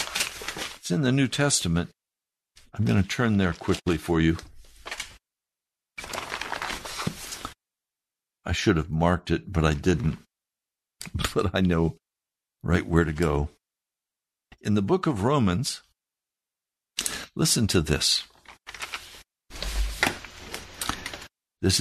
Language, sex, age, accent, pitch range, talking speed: English, male, 60-79, American, 90-115 Hz, 100 wpm